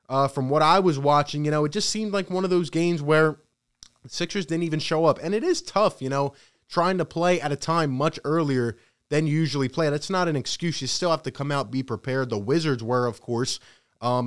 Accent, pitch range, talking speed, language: American, 135-165 Hz, 250 wpm, English